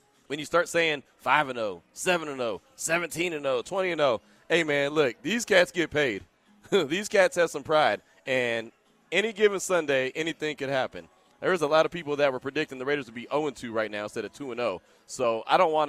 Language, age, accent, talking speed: English, 20-39, American, 180 wpm